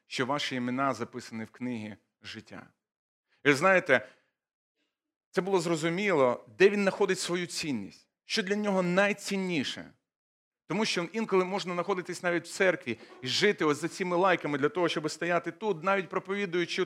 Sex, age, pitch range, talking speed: male, 40-59, 160-205 Hz, 150 wpm